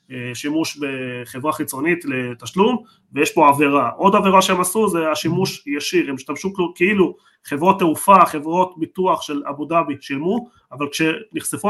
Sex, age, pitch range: male, 30-49, 145-185 Hz